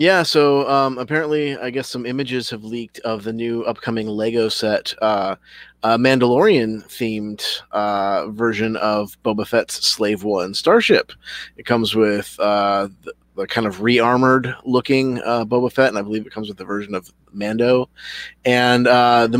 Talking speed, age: 165 wpm, 30-49